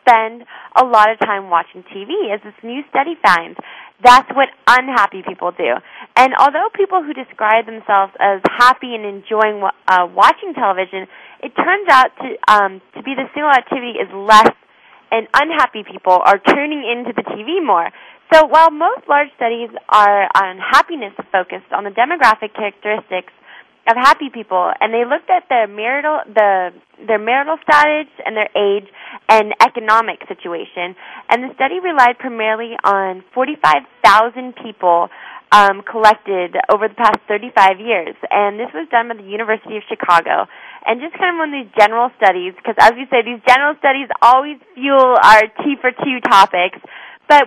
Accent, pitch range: American, 205-265 Hz